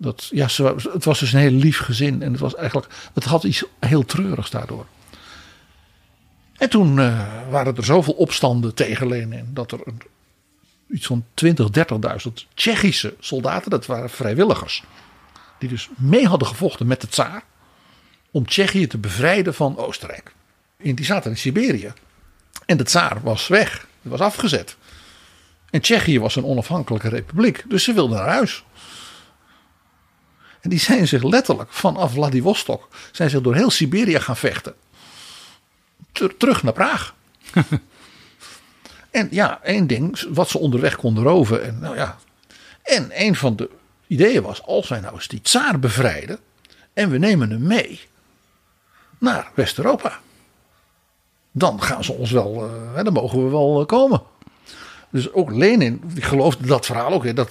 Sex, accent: male, Dutch